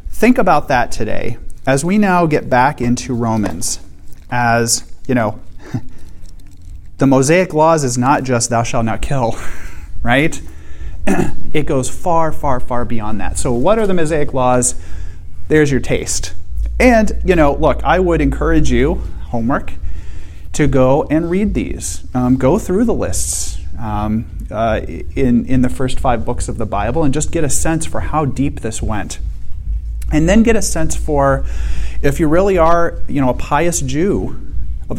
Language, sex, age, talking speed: English, male, 30-49, 165 wpm